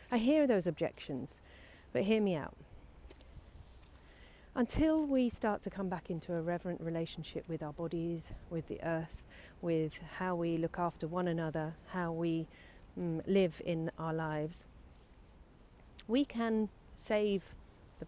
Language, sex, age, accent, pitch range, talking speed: English, female, 40-59, British, 150-190 Hz, 140 wpm